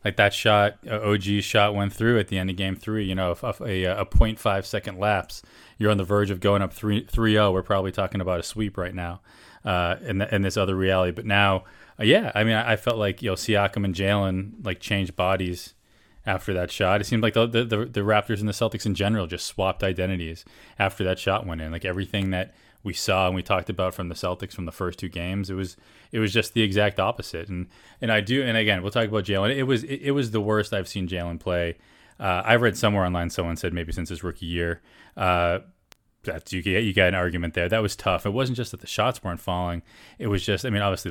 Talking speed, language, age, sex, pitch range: 250 wpm, English, 30-49, male, 90-105 Hz